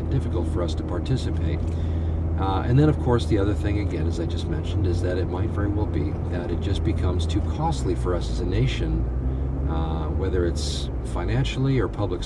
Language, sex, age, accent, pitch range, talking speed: English, male, 50-69, American, 85-115 Hz, 205 wpm